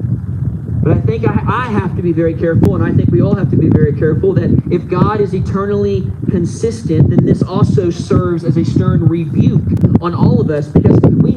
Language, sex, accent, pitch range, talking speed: English, male, American, 135-200 Hz, 200 wpm